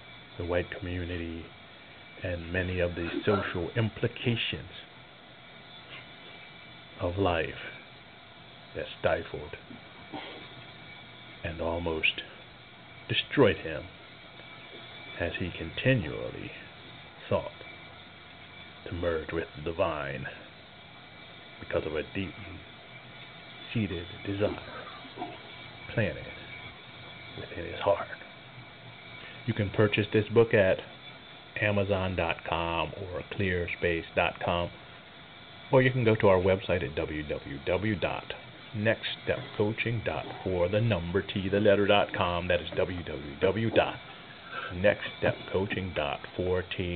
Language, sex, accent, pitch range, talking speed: English, male, American, 85-105 Hz, 80 wpm